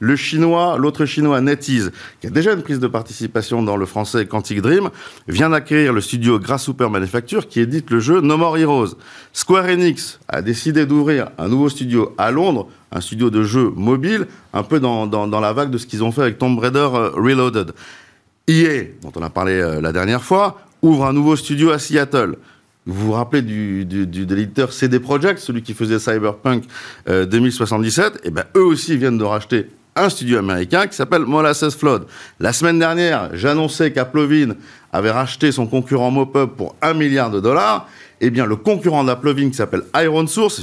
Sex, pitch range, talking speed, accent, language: male, 115-155 Hz, 190 wpm, French, French